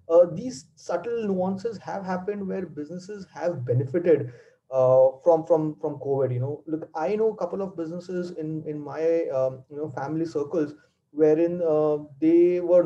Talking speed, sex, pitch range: 170 wpm, male, 150-185 Hz